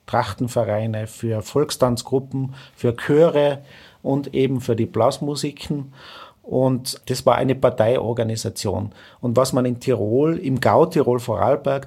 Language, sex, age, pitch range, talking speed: German, male, 40-59, 115-135 Hz, 120 wpm